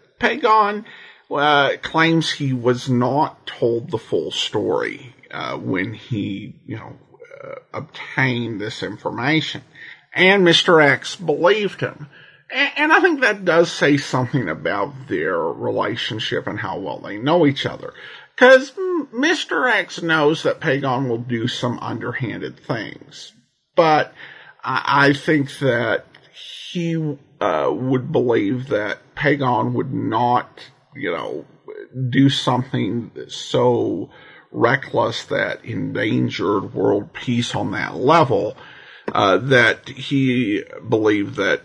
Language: English